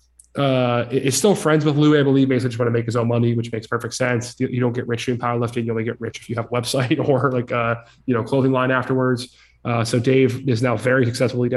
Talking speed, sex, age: 270 wpm, male, 20-39